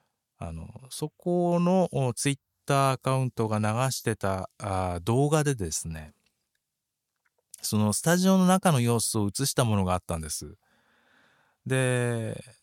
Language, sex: Japanese, male